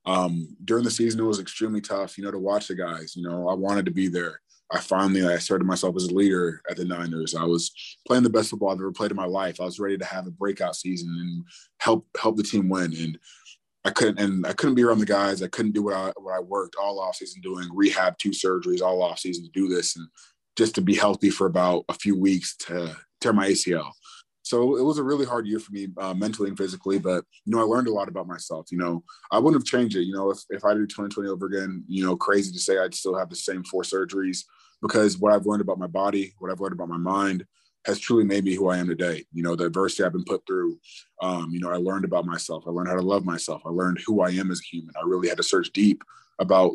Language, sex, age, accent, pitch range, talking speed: English, male, 20-39, American, 90-100 Hz, 265 wpm